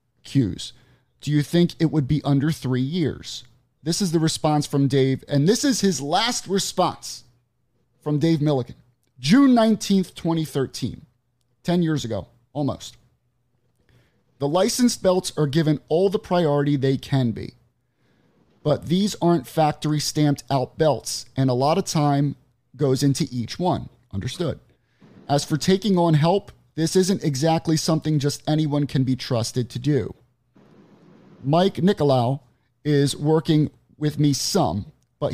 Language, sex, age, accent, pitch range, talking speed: English, male, 30-49, American, 125-165 Hz, 140 wpm